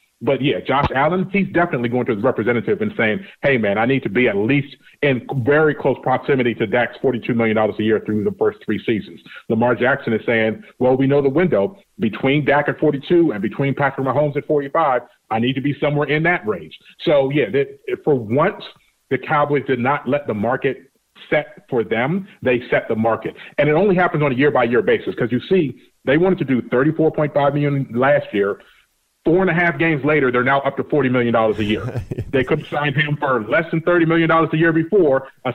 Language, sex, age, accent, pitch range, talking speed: English, male, 40-59, American, 125-160 Hz, 215 wpm